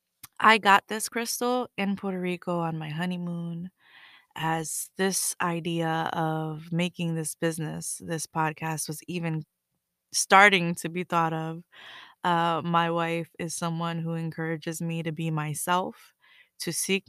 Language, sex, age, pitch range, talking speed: English, female, 20-39, 160-190 Hz, 135 wpm